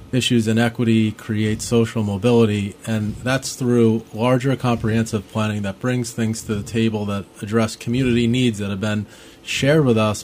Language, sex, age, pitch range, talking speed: English, male, 30-49, 110-120 Hz, 160 wpm